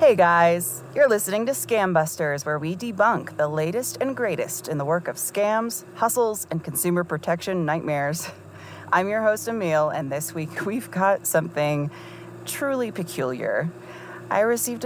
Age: 30-49